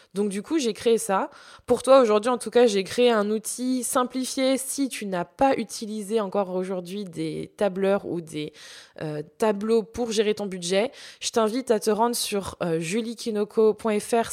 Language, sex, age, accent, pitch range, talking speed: French, female, 20-39, French, 185-235 Hz, 175 wpm